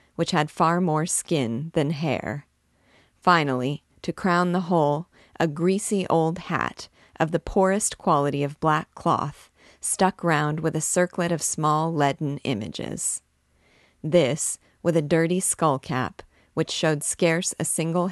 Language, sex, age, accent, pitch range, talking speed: English, female, 40-59, American, 135-170 Hz, 140 wpm